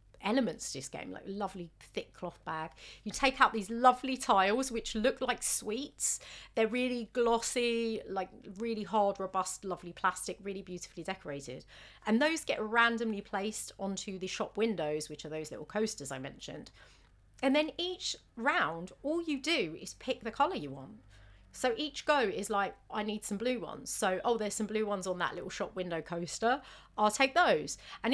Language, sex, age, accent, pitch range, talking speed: English, female, 40-59, British, 185-255 Hz, 185 wpm